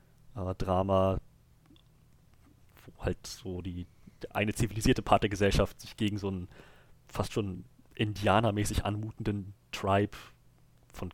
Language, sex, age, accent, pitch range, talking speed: German, male, 30-49, German, 95-125 Hz, 115 wpm